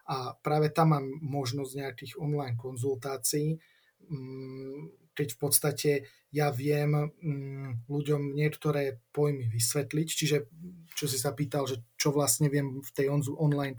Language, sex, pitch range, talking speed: Slovak, male, 135-150 Hz, 125 wpm